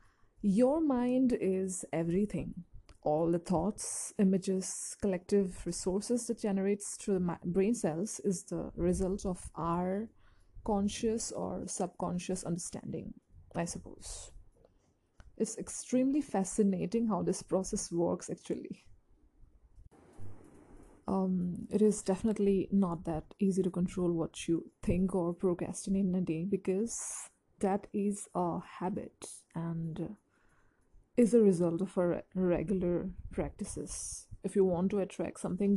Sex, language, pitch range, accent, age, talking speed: female, English, 175-205 Hz, Indian, 20-39, 120 wpm